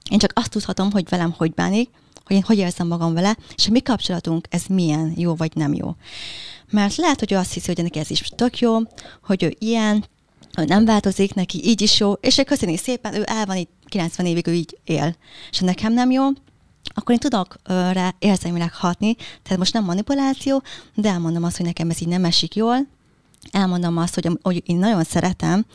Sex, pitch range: female, 175-220 Hz